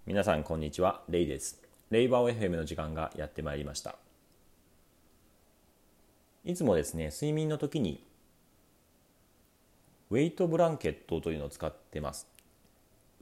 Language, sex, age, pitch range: Japanese, male, 40-59, 75-120 Hz